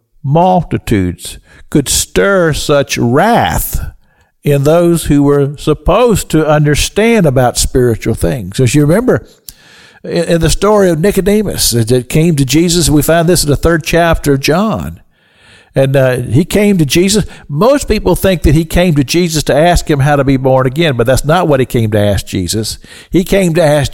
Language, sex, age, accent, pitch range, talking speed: English, male, 60-79, American, 120-175 Hz, 180 wpm